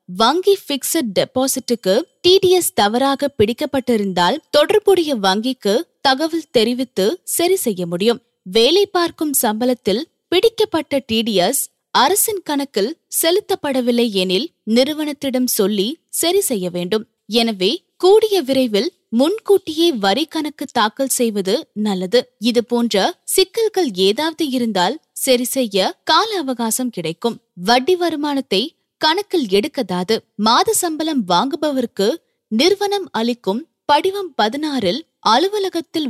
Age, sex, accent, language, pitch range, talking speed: 20-39, female, native, Tamil, 215-320 Hz, 90 wpm